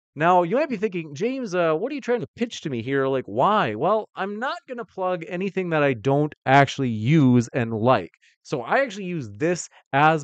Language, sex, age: English, male, 30-49